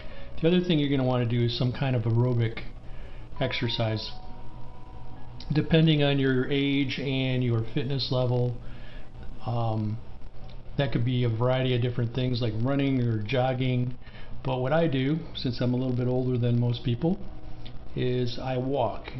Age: 50-69